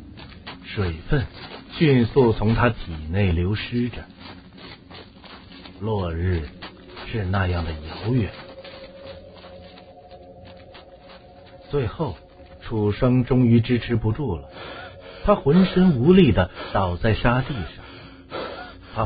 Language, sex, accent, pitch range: Chinese, male, native, 90-125 Hz